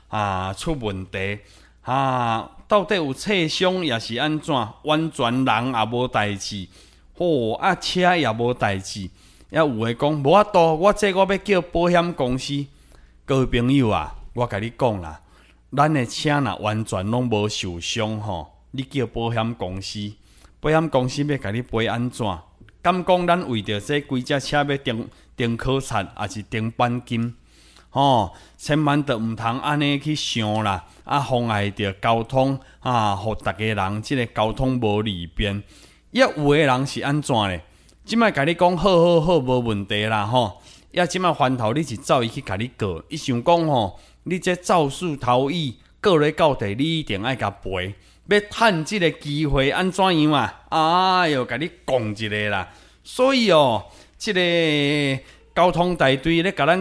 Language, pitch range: Chinese, 105-155 Hz